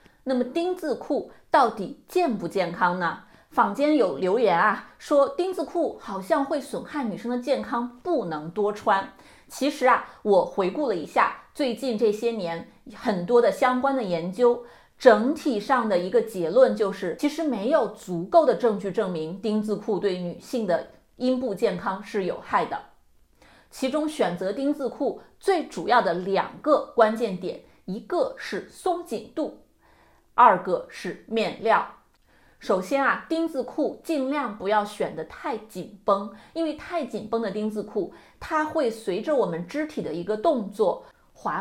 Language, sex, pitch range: Chinese, female, 205-290 Hz